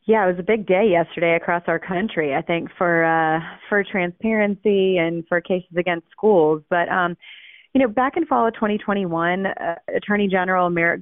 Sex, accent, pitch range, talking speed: female, American, 165-200 Hz, 185 wpm